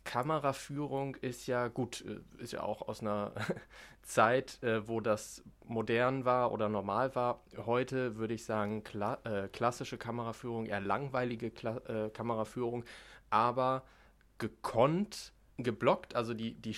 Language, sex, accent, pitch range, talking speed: German, male, German, 110-135 Hz, 120 wpm